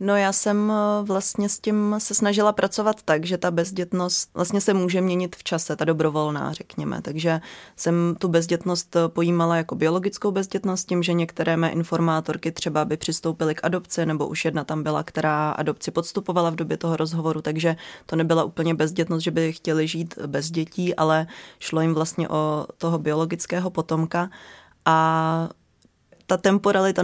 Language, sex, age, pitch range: Czech, female, 20-39, 165-185 Hz